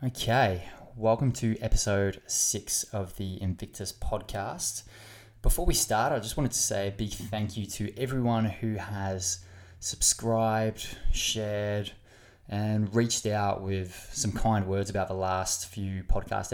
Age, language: 20-39, English